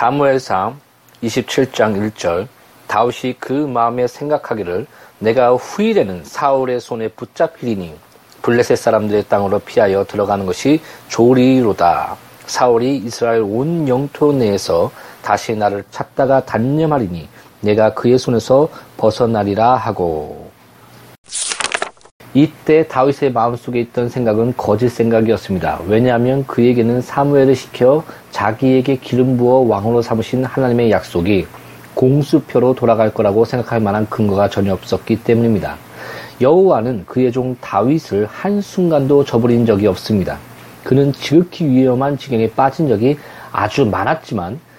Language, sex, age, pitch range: Korean, male, 40-59, 110-135 Hz